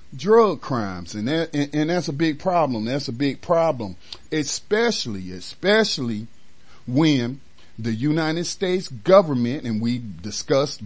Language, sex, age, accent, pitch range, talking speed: English, male, 40-59, American, 110-145 Hz, 135 wpm